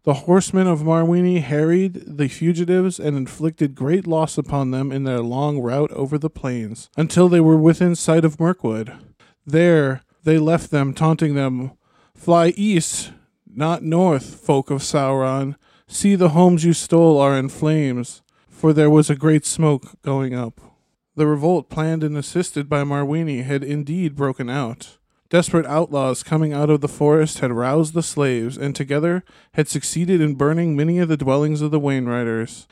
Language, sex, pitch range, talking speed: English, male, 135-160 Hz, 165 wpm